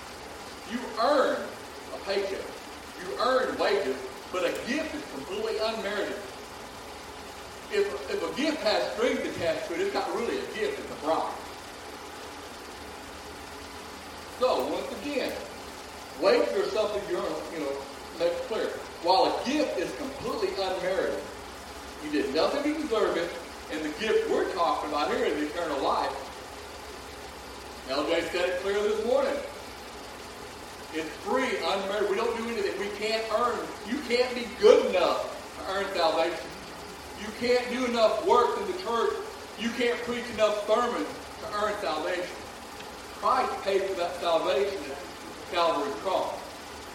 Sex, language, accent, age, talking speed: male, English, American, 40-59, 145 wpm